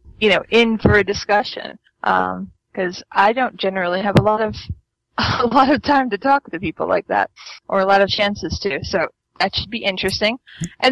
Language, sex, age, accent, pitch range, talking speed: English, female, 20-39, American, 185-215 Hz, 205 wpm